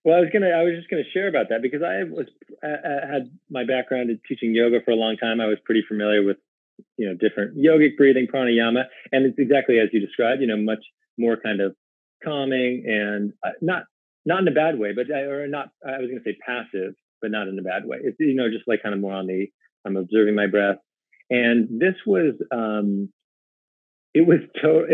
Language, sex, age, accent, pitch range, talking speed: English, male, 30-49, American, 105-130 Hz, 230 wpm